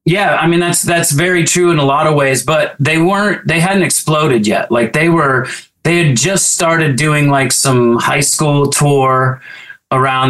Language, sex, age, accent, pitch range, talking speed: English, male, 30-49, American, 125-150 Hz, 190 wpm